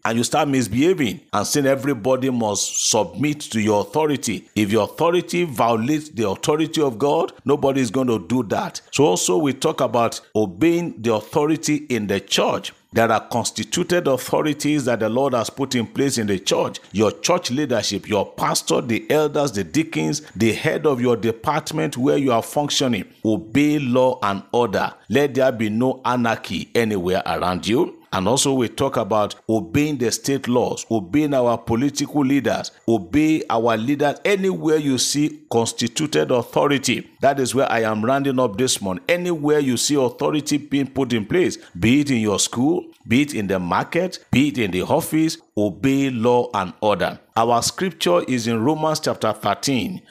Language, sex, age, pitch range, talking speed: English, male, 50-69, 115-150 Hz, 175 wpm